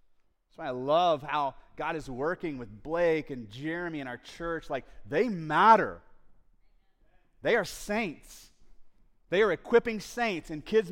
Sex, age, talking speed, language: male, 30-49, 150 wpm, English